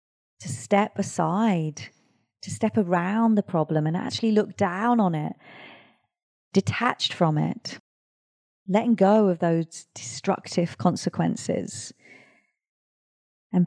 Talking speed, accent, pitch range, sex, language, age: 105 wpm, British, 165-200 Hz, female, English, 30-49